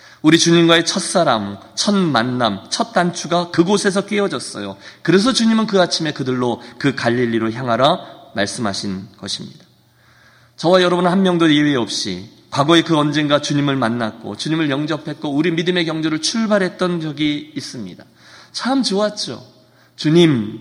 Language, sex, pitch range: Korean, male, 130-185 Hz